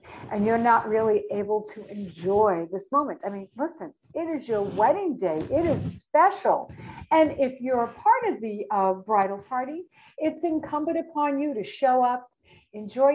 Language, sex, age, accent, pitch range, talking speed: English, female, 50-69, American, 205-285 Hz, 175 wpm